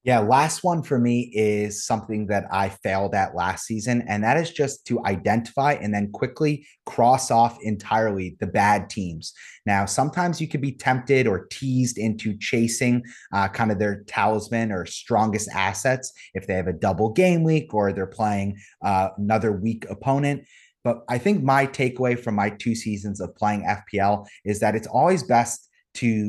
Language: English